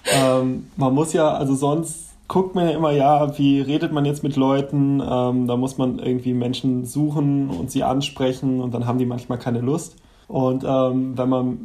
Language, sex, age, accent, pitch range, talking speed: German, male, 10-29, German, 130-150 Hz, 195 wpm